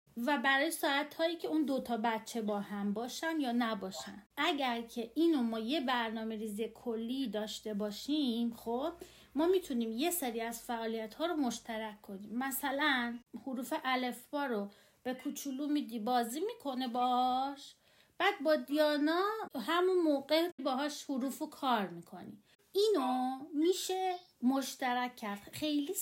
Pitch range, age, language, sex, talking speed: 230-300 Hz, 30-49, Persian, female, 135 wpm